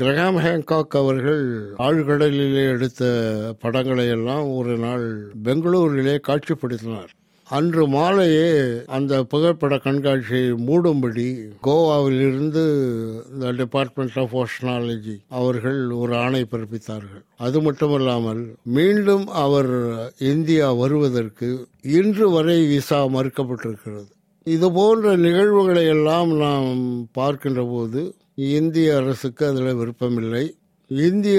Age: 60-79